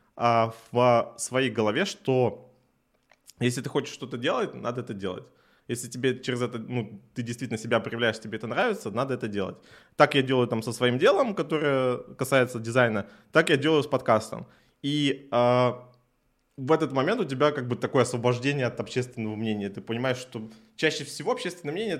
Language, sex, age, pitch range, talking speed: Russian, male, 20-39, 115-140 Hz, 170 wpm